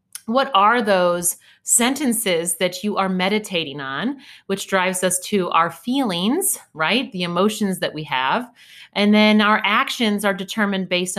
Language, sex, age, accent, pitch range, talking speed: English, female, 30-49, American, 175-215 Hz, 150 wpm